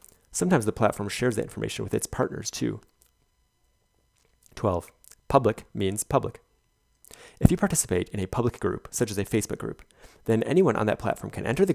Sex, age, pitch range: male, 30-49, 100-125 Hz